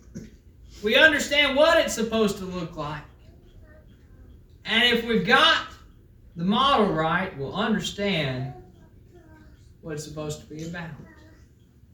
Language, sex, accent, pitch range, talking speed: English, male, American, 165-260 Hz, 115 wpm